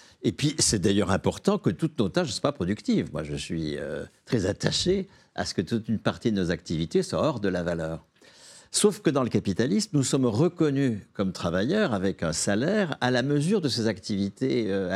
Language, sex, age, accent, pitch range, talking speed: French, male, 60-79, French, 90-130 Hz, 210 wpm